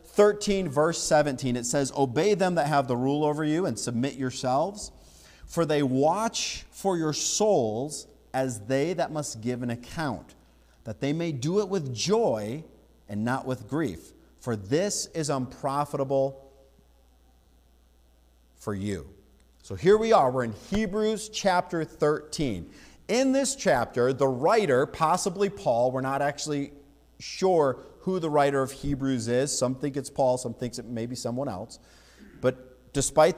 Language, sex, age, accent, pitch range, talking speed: English, male, 40-59, American, 120-155 Hz, 155 wpm